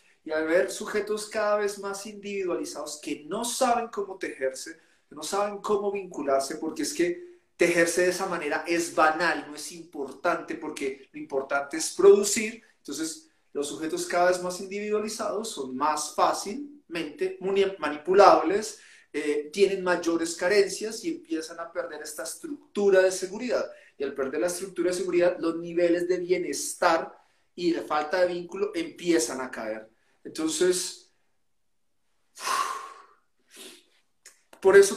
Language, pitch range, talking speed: Spanish, 160-250 Hz, 135 wpm